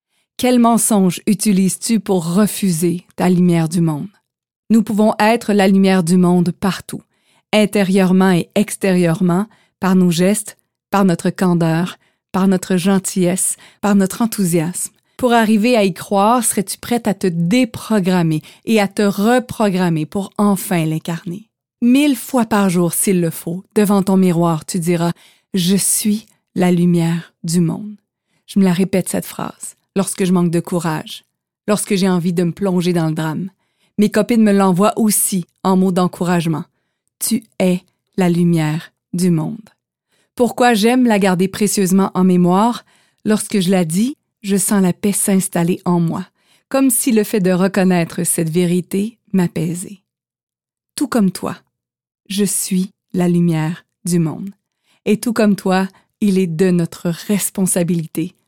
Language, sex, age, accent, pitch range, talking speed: French, female, 30-49, Canadian, 175-210 Hz, 150 wpm